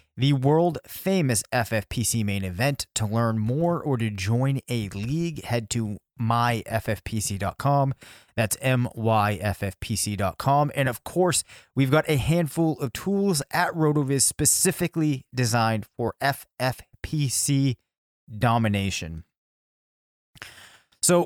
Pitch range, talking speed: 110-140 Hz, 100 wpm